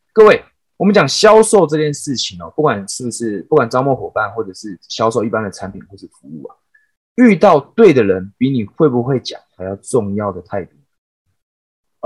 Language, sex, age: Chinese, male, 20-39